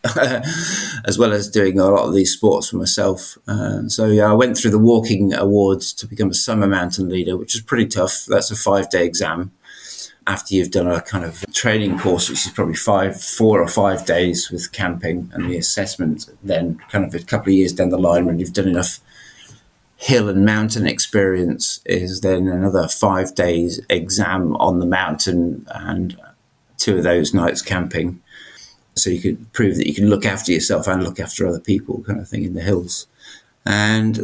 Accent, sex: British, male